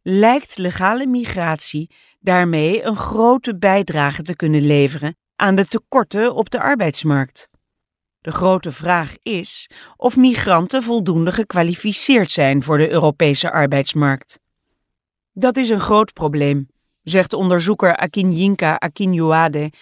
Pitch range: 155-215 Hz